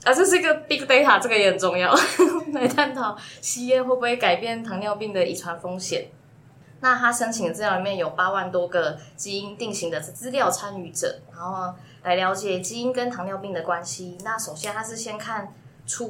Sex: female